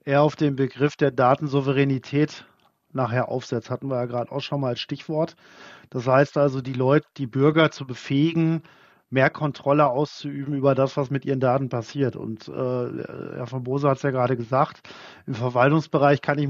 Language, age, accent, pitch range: German, 40-59, German, 135-155 Hz